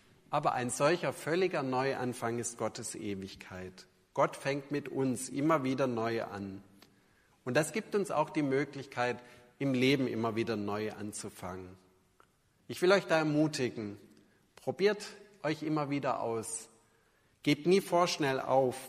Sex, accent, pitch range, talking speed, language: male, German, 110-145 Hz, 135 wpm, German